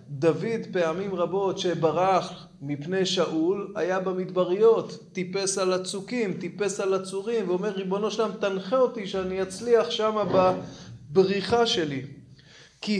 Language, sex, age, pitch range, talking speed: Hebrew, male, 20-39, 155-200 Hz, 120 wpm